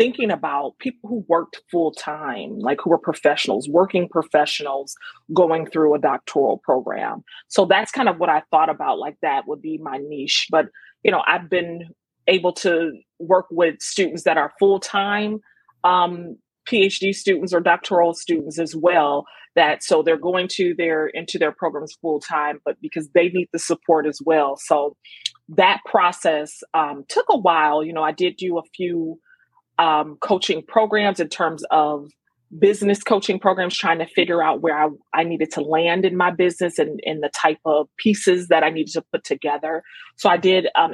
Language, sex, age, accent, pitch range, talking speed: English, female, 30-49, American, 155-190 Hz, 185 wpm